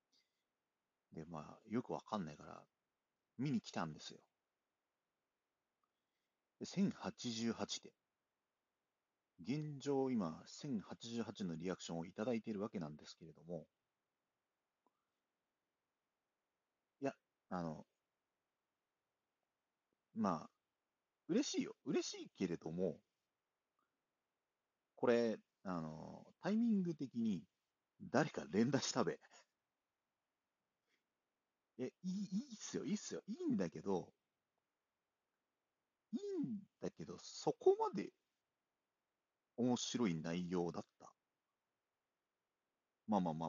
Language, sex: Japanese, male